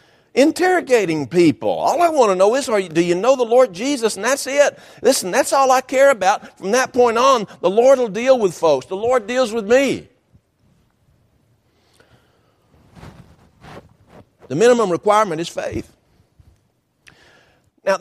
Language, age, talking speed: English, 50-69, 145 wpm